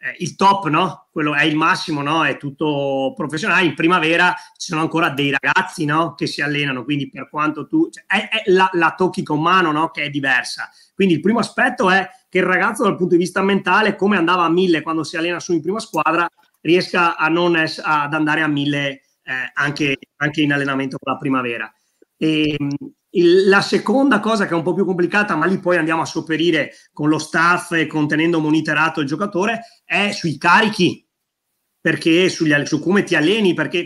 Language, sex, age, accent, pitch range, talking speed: Italian, male, 30-49, native, 155-195 Hz, 195 wpm